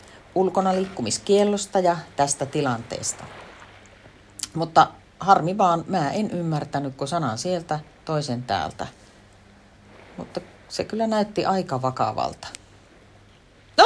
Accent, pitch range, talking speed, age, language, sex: native, 145-220 Hz, 100 wpm, 40-59, Finnish, female